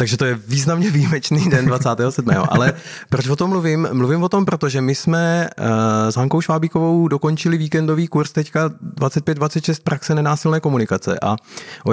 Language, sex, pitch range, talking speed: Czech, male, 125-160 Hz, 155 wpm